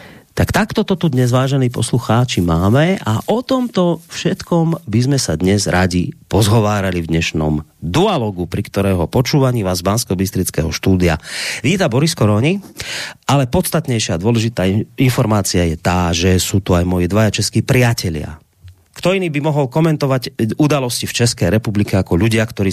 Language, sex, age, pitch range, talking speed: Slovak, male, 30-49, 100-140 Hz, 155 wpm